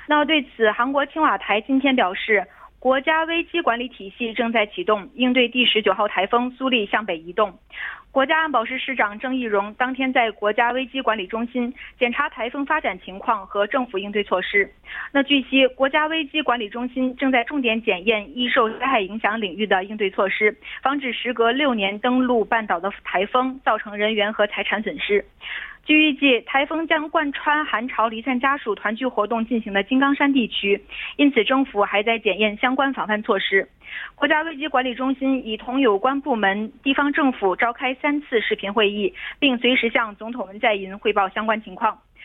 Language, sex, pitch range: Korean, female, 210-270 Hz